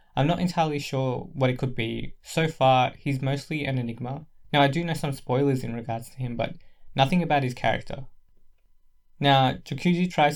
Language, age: English, 20-39